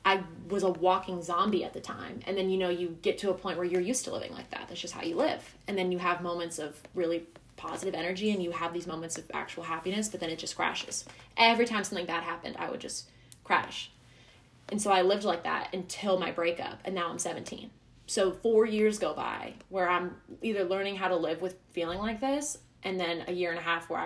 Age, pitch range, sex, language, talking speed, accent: 20-39, 170-200 Hz, female, English, 240 wpm, American